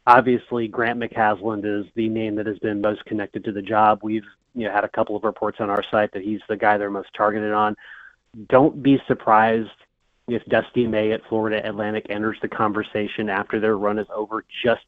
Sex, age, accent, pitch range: male, 30-49, American, 105-120 Hz